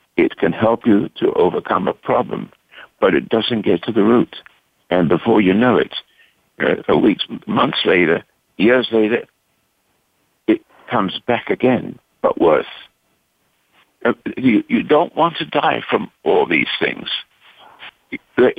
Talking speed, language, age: 135 wpm, English, 60-79